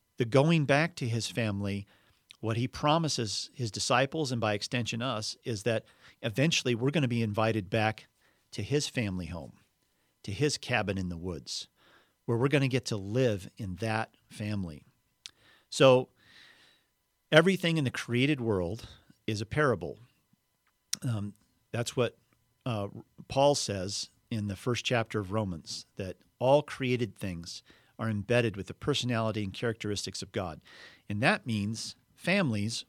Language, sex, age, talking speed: English, male, 50-69, 150 wpm